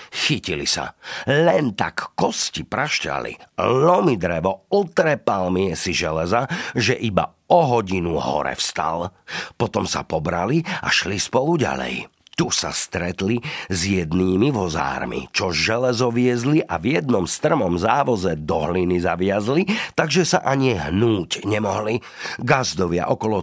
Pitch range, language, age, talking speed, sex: 95-155 Hz, Slovak, 50-69, 120 wpm, male